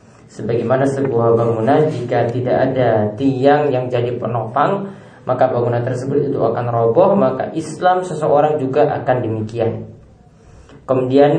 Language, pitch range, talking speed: Indonesian, 125-150 Hz, 120 wpm